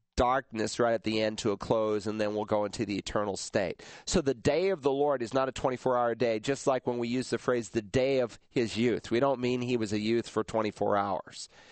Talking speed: 255 wpm